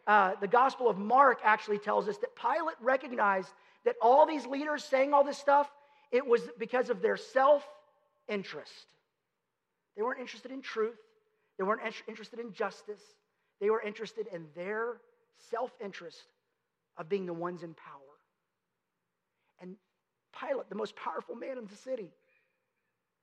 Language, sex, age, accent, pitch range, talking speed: English, male, 40-59, American, 215-310 Hz, 145 wpm